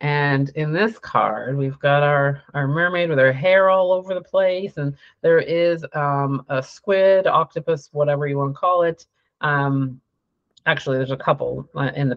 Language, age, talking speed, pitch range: English, 30-49, 180 wpm, 135-165 Hz